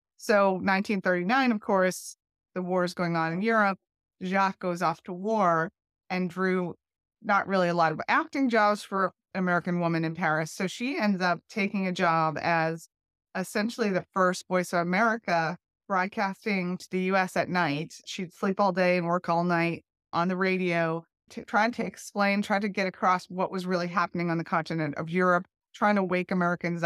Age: 30-49